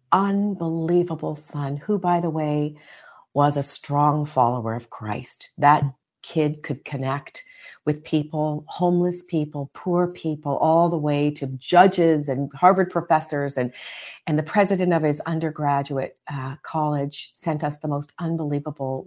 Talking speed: 140 wpm